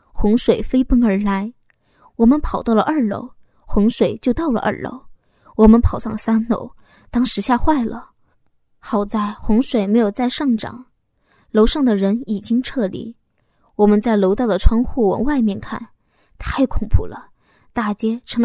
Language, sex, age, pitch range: Chinese, female, 10-29, 210-250 Hz